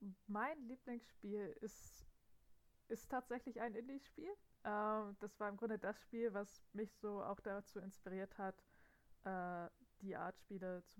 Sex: female